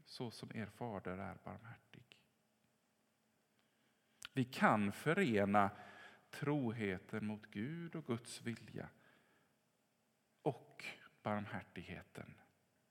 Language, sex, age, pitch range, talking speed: English, male, 50-69, 100-130 Hz, 80 wpm